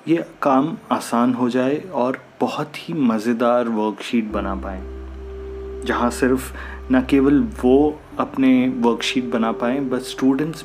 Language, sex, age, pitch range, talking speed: Hindi, male, 30-49, 115-160 Hz, 130 wpm